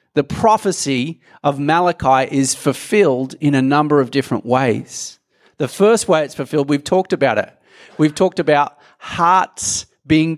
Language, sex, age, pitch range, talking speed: English, male, 40-59, 150-200 Hz, 150 wpm